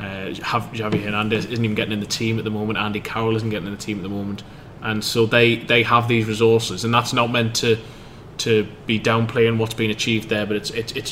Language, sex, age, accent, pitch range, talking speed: English, male, 20-39, British, 110-120 Hz, 245 wpm